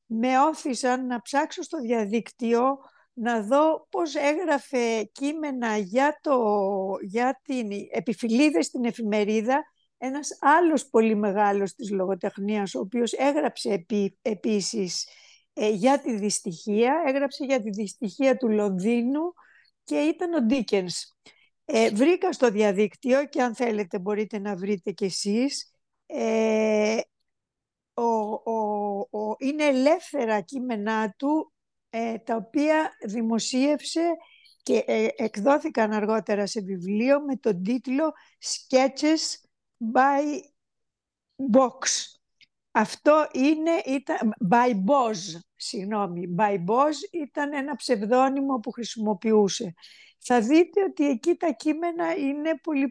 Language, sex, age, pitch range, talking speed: Greek, female, 50-69, 215-285 Hz, 110 wpm